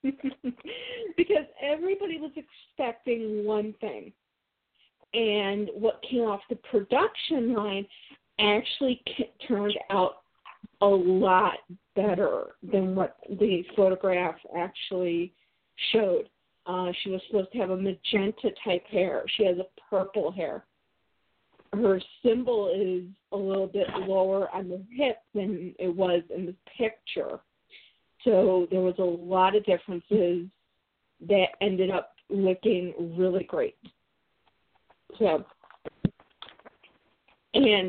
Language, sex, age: English, female, 40-59